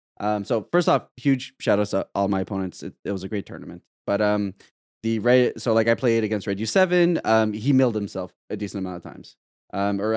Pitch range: 95-125 Hz